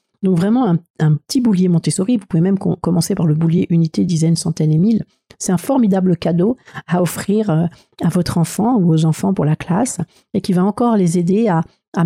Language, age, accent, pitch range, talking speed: French, 50-69, French, 160-200 Hz, 210 wpm